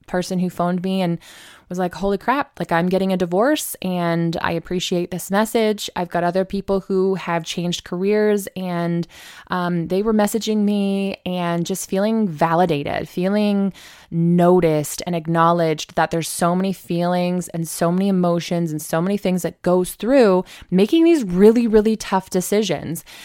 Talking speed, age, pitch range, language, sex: 165 wpm, 20-39, 175-210 Hz, English, female